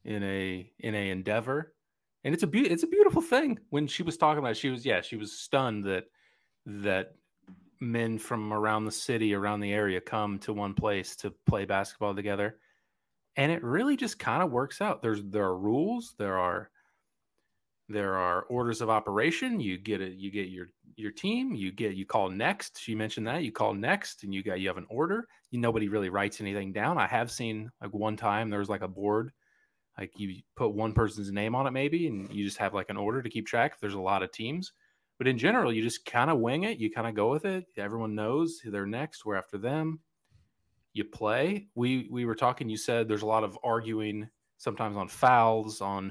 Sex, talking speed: male, 220 wpm